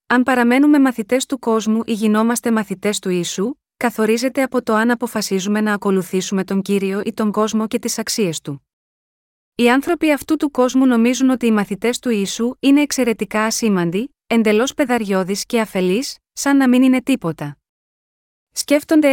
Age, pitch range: 20-39, 205-255 Hz